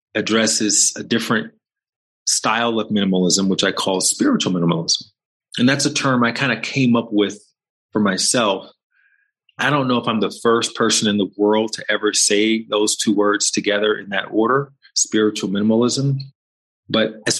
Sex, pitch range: male, 100-115 Hz